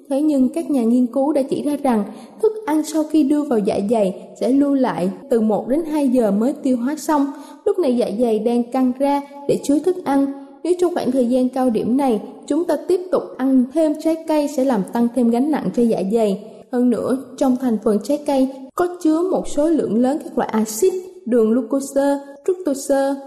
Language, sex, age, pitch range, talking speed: Vietnamese, female, 20-39, 235-305 Hz, 220 wpm